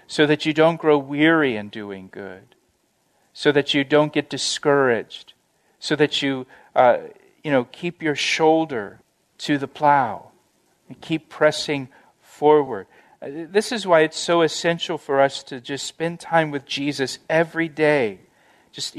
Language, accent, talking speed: English, American, 150 wpm